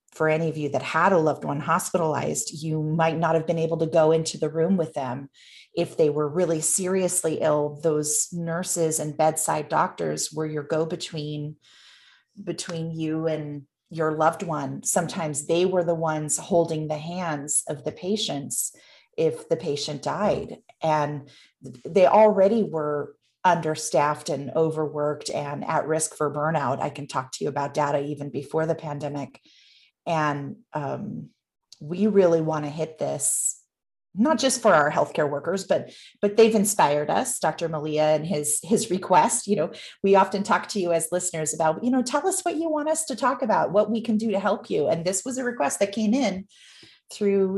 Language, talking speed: English, 180 wpm